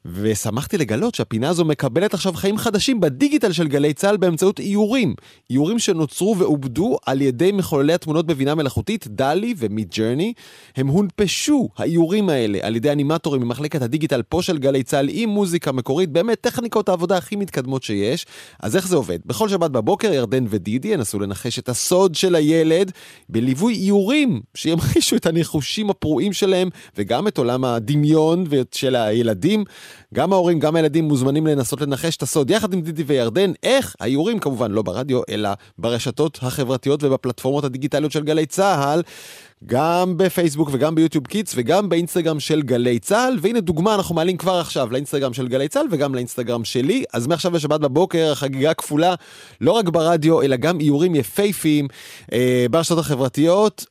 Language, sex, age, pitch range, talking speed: Hebrew, male, 30-49, 130-185 Hz, 145 wpm